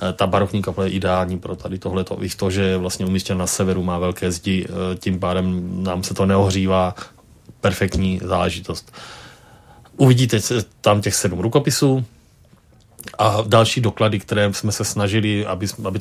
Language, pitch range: Czech, 95-105 Hz